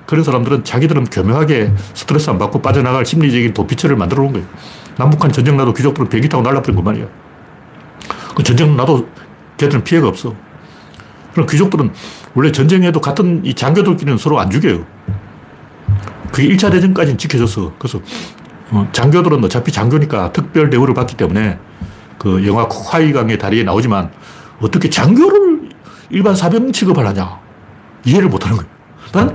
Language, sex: Korean, male